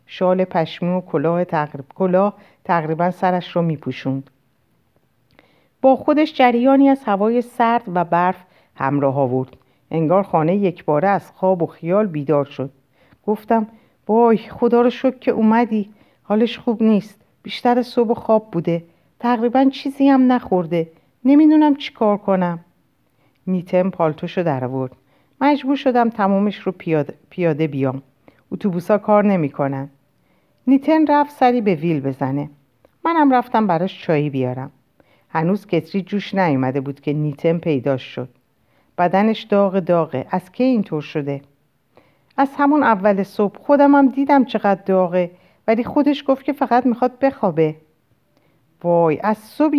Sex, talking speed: female, 130 wpm